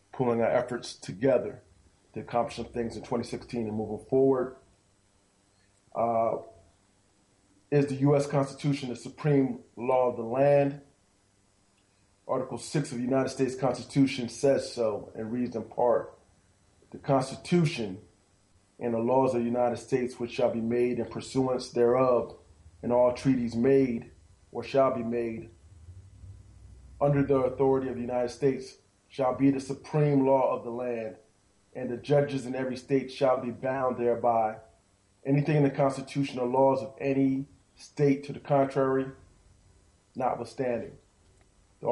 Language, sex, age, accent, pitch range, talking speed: English, male, 30-49, American, 110-135 Hz, 145 wpm